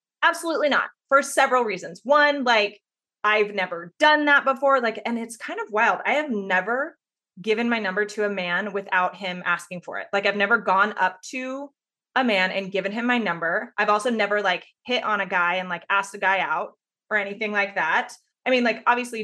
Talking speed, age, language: 210 wpm, 20-39, English